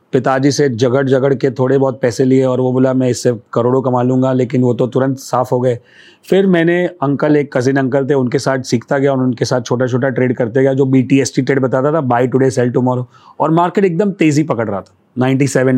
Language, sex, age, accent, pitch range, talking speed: Hindi, male, 30-49, native, 125-150 Hz, 240 wpm